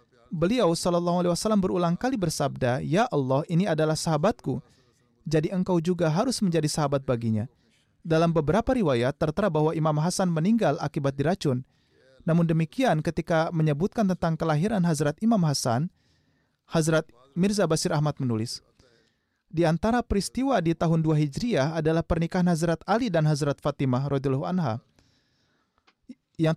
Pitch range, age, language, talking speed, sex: 150-185 Hz, 30-49, Indonesian, 130 wpm, male